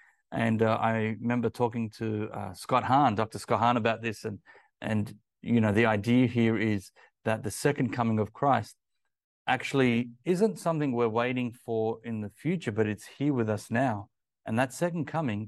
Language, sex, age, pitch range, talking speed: English, male, 30-49, 110-125 Hz, 180 wpm